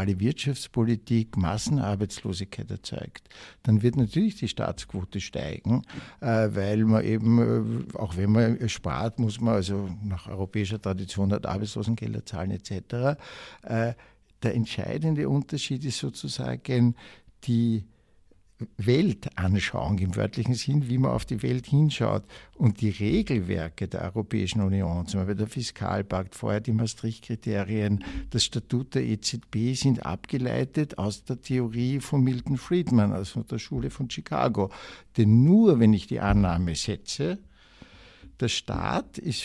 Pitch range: 100-130 Hz